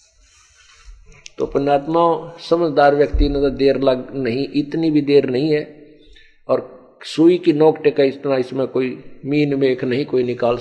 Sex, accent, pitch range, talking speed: male, native, 120-155 Hz, 155 wpm